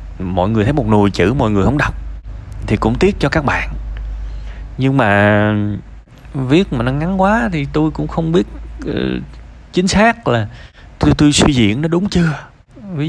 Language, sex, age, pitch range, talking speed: Vietnamese, male, 20-39, 100-145 Hz, 185 wpm